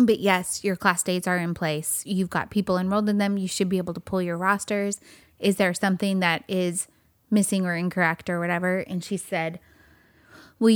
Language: English